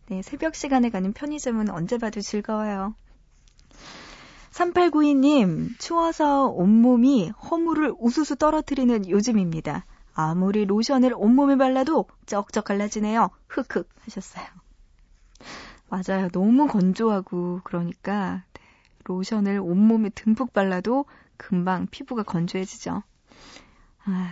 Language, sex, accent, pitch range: Korean, female, native, 190-265 Hz